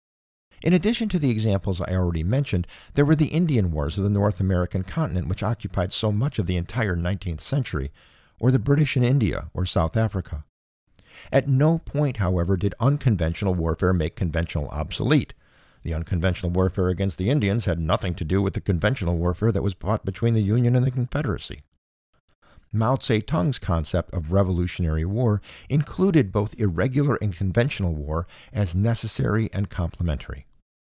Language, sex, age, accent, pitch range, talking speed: English, male, 50-69, American, 85-110 Hz, 165 wpm